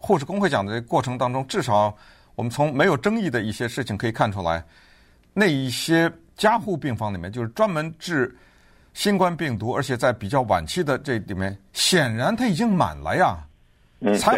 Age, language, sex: 50-69, Chinese, male